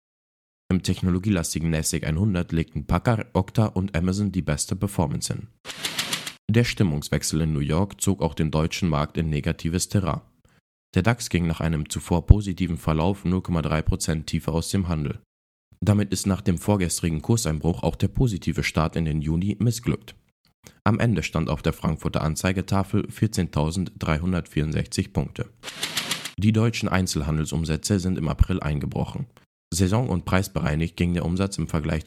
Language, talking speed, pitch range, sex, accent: German, 145 wpm, 80-100 Hz, male, German